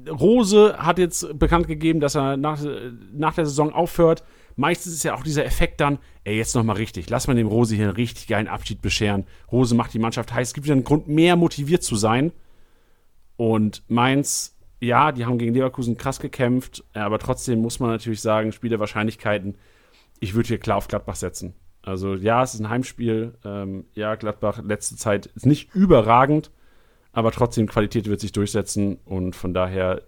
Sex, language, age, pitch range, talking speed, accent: male, German, 40-59, 110-150 Hz, 190 wpm, German